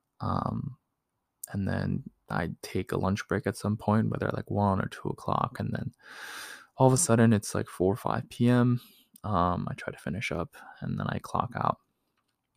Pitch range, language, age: 90-105 Hz, English, 20-39